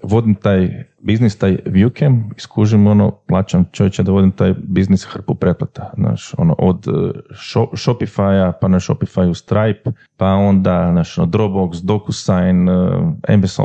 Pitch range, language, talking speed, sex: 95-115 Hz, Croatian, 140 wpm, male